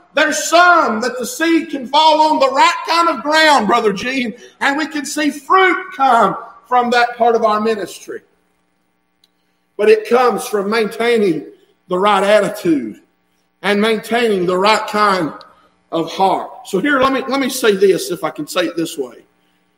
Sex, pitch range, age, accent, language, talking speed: male, 195-310 Hz, 50-69, American, English, 170 wpm